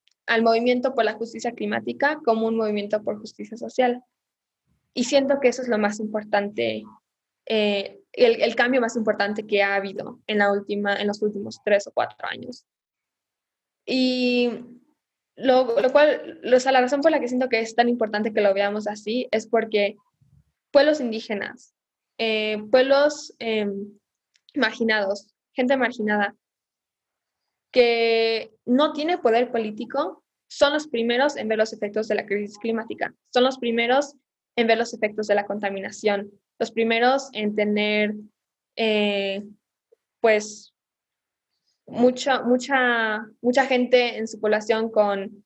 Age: 10-29